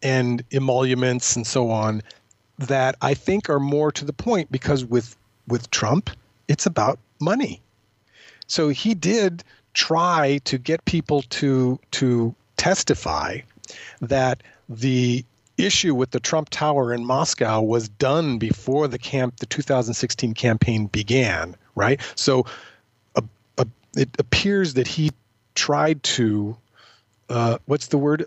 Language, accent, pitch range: English, American, 110-140 Hz